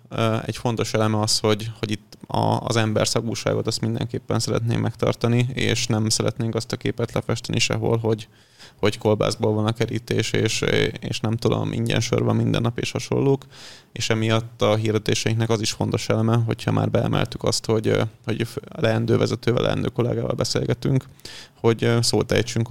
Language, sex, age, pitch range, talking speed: Hungarian, male, 20-39, 110-120 Hz, 165 wpm